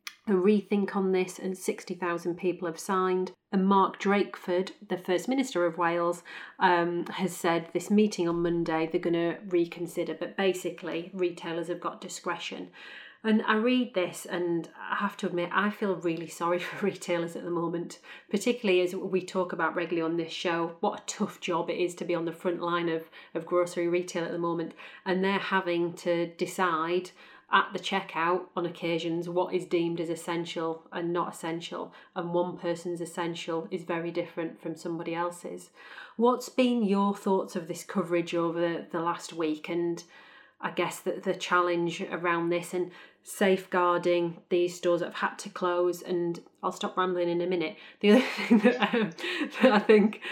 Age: 30-49